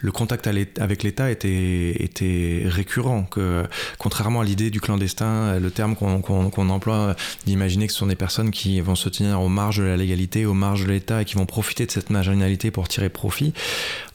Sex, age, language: male, 20-39, French